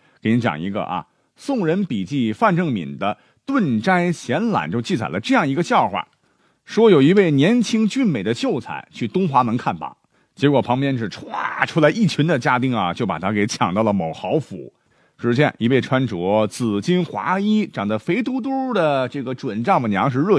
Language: Chinese